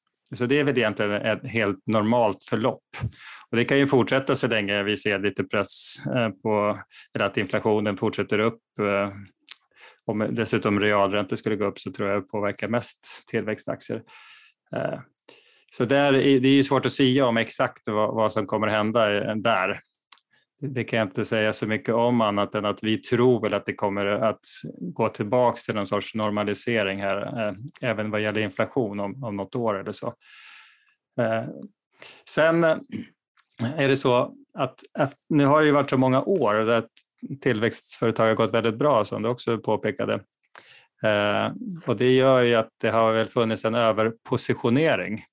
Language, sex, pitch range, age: English, male, 105-130 Hz, 30-49